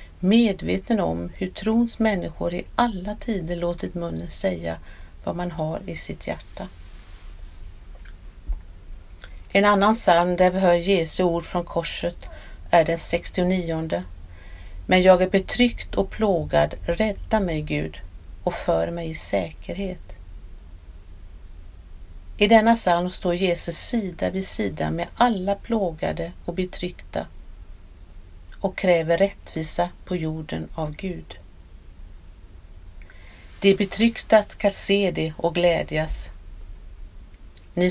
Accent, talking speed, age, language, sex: native, 115 wpm, 50-69, Swedish, female